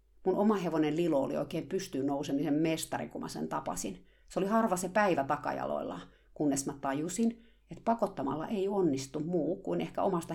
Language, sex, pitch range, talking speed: Finnish, female, 140-185 Hz, 175 wpm